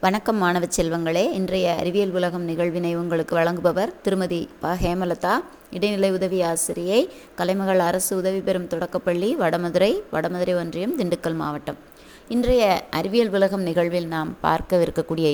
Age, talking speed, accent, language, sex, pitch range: 20-39, 120 wpm, native, Tamil, female, 170-220 Hz